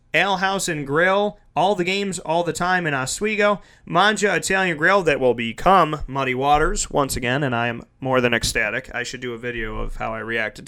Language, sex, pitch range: English, male, 140-195 Hz